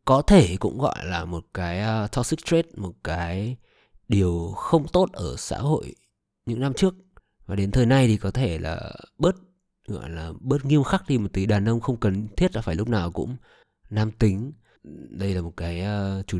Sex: male